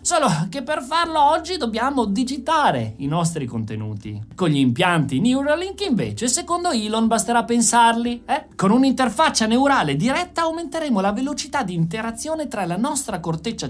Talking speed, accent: 145 wpm, native